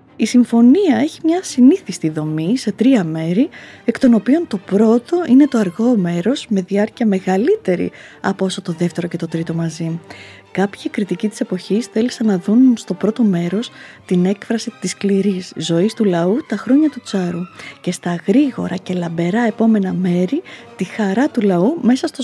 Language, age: Greek, 20-39